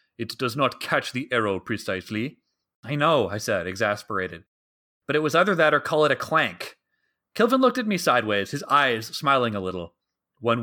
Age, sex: 30-49, male